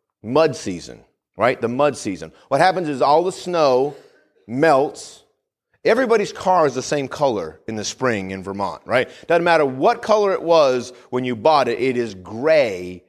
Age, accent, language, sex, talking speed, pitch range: 30-49, American, English, male, 175 wpm, 115-160 Hz